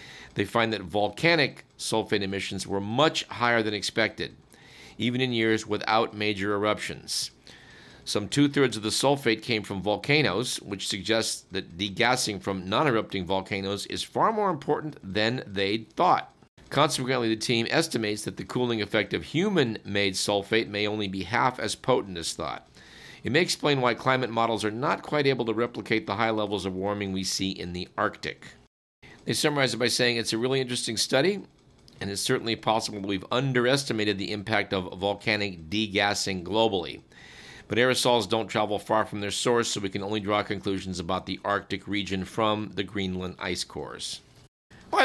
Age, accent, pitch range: 50-69, American, 100-120 Hz